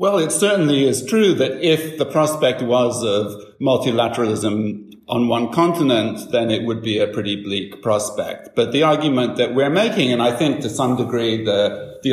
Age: 50-69